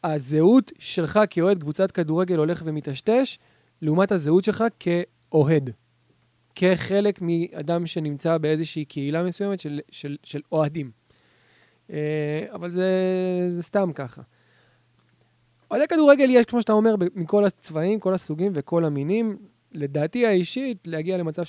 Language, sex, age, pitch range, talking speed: Hebrew, male, 20-39, 145-200 Hz, 125 wpm